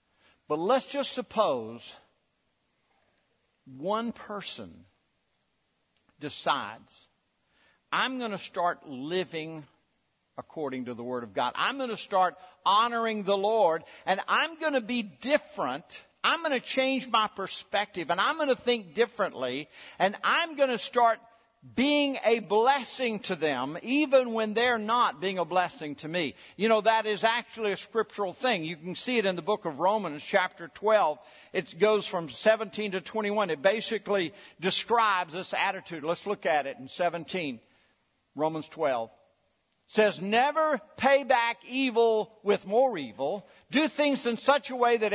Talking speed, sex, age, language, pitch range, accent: 155 wpm, male, 60-79, English, 190-265 Hz, American